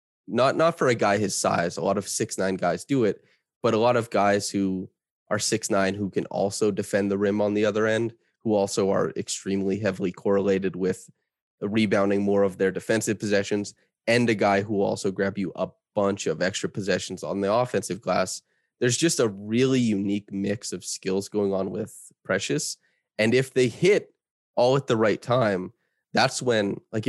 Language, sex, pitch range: English, male, 100-115 Hz